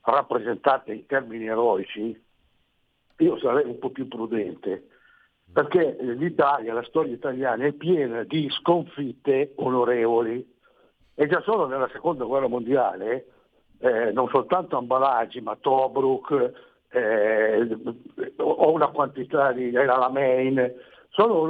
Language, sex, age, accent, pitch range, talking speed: Italian, male, 60-79, native, 125-175 Hz, 115 wpm